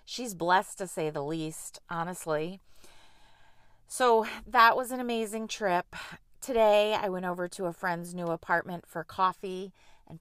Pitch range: 165-210 Hz